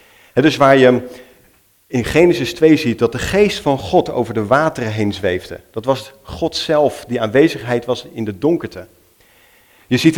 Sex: male